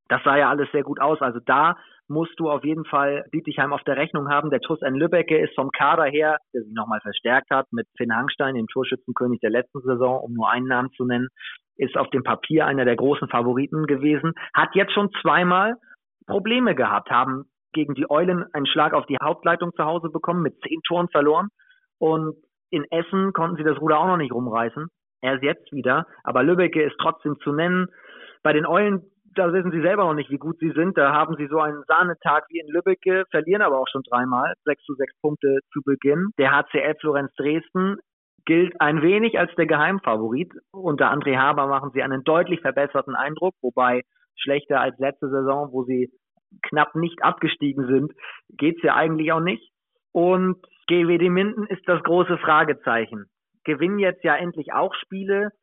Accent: German